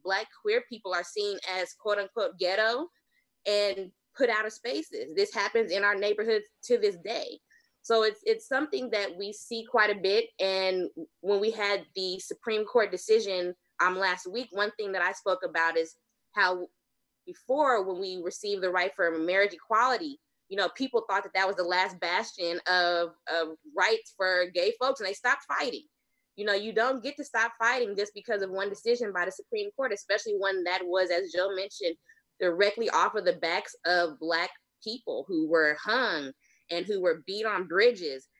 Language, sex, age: English, female, 20-39